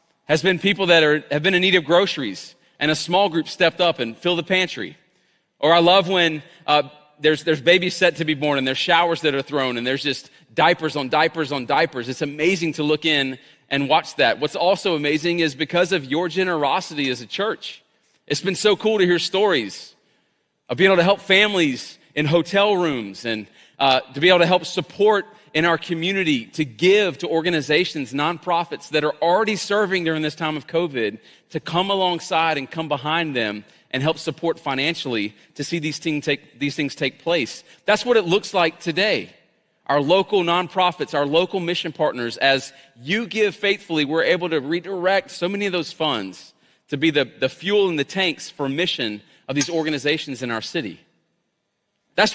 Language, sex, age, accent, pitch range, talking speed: English, male, 30-49, American, 145-185 Hz, 190 wpm